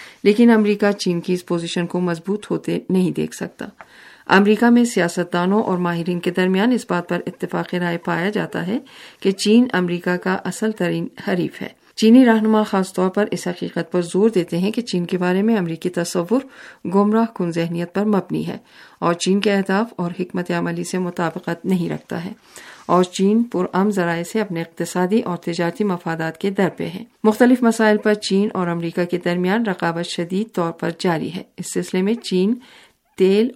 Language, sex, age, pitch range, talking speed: Urdu, female, 50-69, 175-210 Hz, 190 wpm